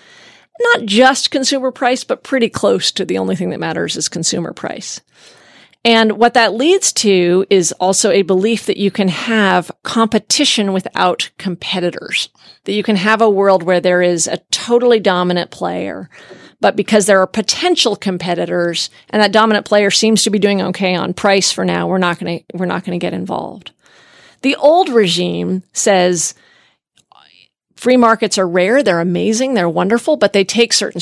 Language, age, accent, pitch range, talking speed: English, 40-59, American, 185-240 Hz, 175 wpm